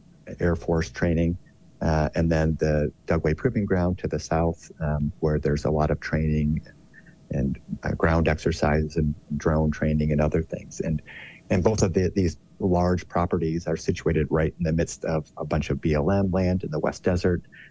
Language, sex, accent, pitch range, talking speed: English, male, American, 80-90 Hz, 185 wpm